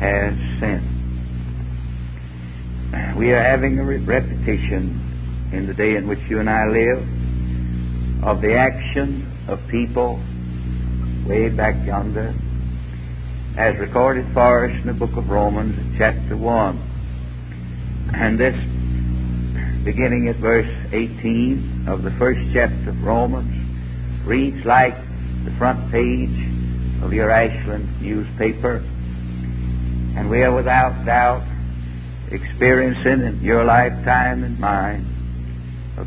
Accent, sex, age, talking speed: American, male, 60-79, 115 wpm